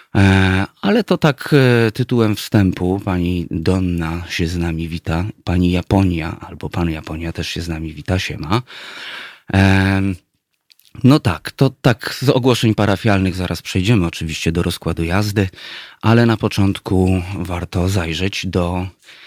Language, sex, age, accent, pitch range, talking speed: Polish, male, 30-49, native, 85-100 Hz, 130 wpm